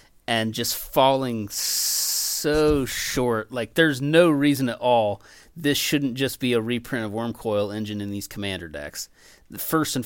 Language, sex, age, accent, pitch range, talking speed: English, male, 30-49, American, 110-130 Hz, 160 wpm